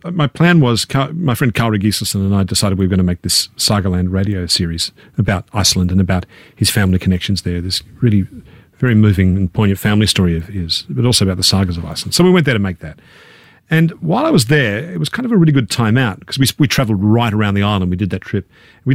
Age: 40-59